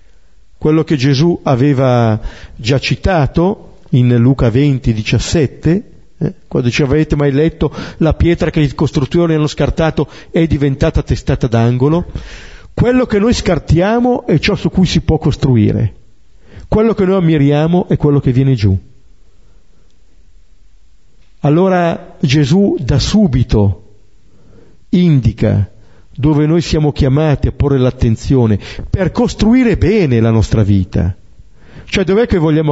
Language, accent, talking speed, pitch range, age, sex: Italian, native, 125 wpm, 100-170 Hz, 50-69, male